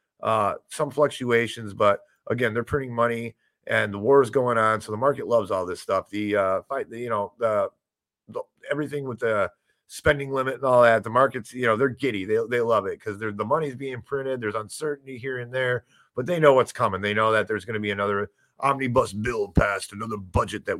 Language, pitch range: English, 105-135 Hz